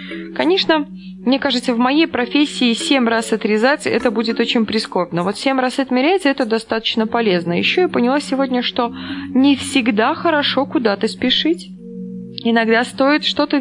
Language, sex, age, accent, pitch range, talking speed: Russian, female, 20-39, native, 205-275 Hz, 145 wpm